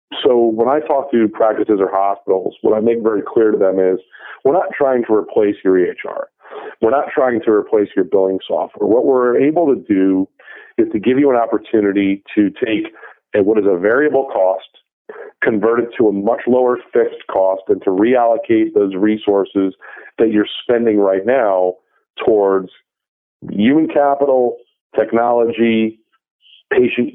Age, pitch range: 40-59, 100-140 Hz